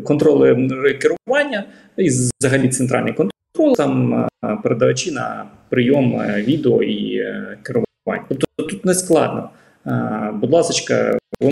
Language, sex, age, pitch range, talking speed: Ukrainian, male, 20-39, 130-195 Hz, 110 wpm